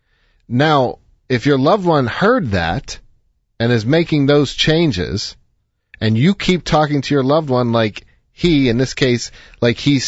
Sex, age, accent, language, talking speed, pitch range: male, 40-59, American, English, 160 wpm, 110-140 Hz